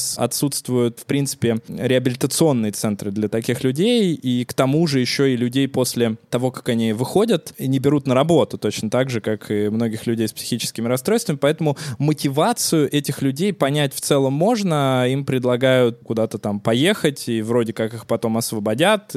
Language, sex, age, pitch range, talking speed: Russian, male, 20-39, 115-145 Hz, 170 wpm